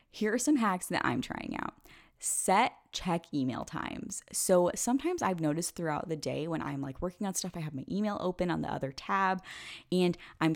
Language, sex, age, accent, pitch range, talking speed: English, female, 10-29, American, 145-195 Hz, 205 wpm